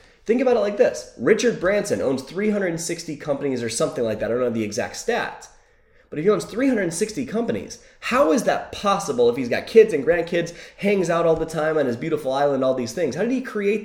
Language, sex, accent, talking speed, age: English, male, American, 225 wpm, 20-39